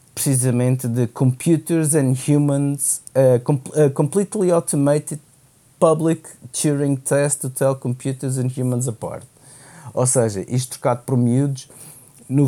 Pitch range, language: 125-145 Hz, Portuguese